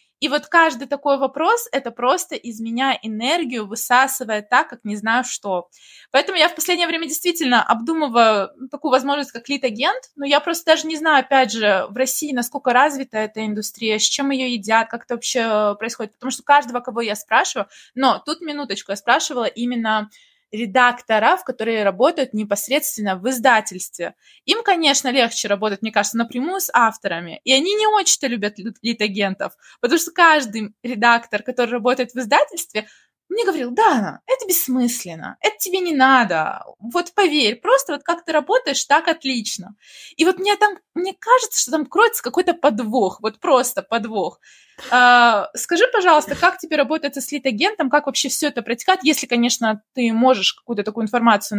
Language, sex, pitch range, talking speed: Russian, female, 220-310 Hz, 165 wpm